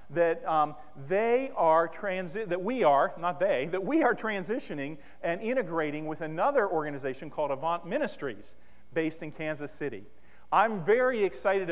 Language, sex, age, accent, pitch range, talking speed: English, male, 40-59, American, 170-225 Hz, 150 wpm